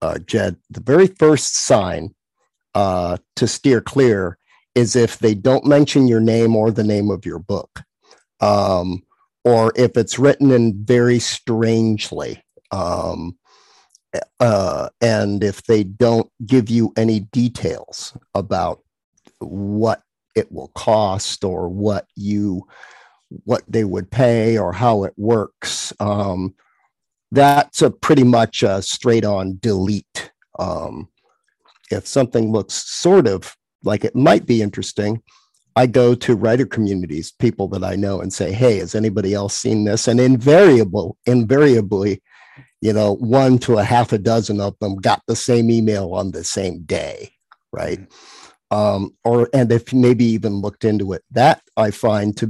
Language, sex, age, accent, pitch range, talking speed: English, male, 50-69, American, 100-120 Hz, 150 wpm